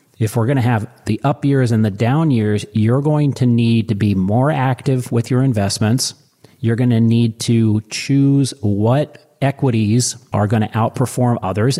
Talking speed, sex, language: 185 wpm, male, English